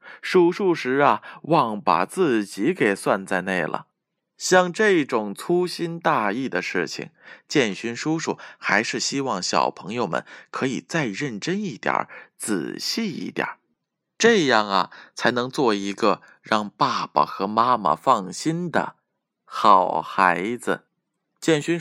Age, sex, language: 20-39, male, Chinese